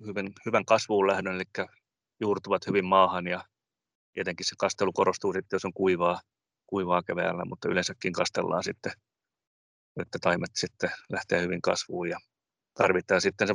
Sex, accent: male, native